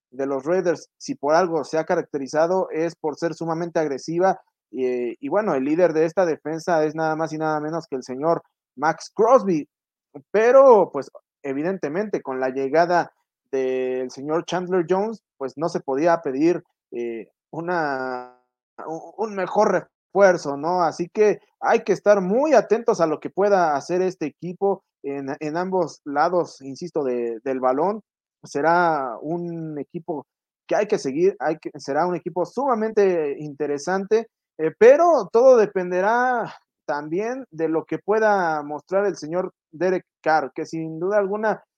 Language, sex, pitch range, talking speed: Spanish, male, 155-200 Hz, 150 wpm